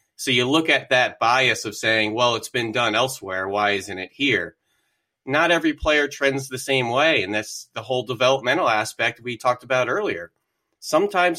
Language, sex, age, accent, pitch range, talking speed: English, male, 30-49, American, 110-140 Hz, 185 wpm